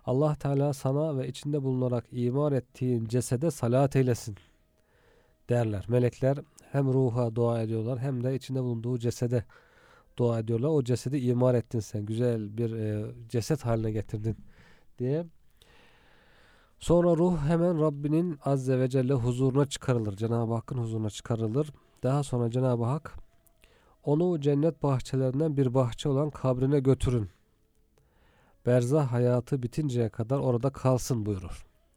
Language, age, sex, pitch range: Turkish, 40-59, male, 115-140 Hz